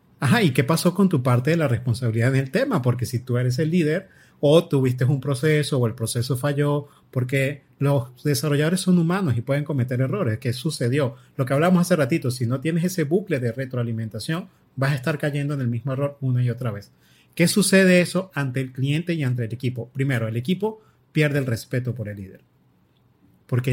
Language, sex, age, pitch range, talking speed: Spanish, male, 30-49, 125-160 Hz, 205 wpm